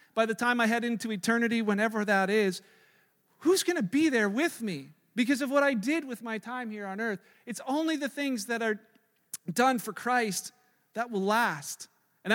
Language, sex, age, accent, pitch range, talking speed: English, male, 40-59, American, 190-235 Hz, 200 wpm